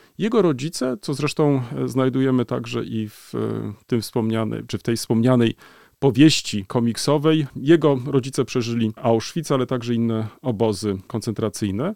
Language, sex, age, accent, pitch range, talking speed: Polish, male, 40-59, native, 120-160 Hz, 125 wpm